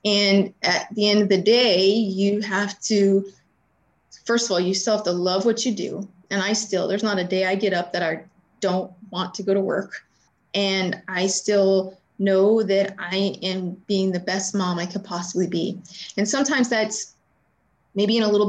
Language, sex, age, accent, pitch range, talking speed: English, female, 30-49, American, 190-230 Hz, 200 wpm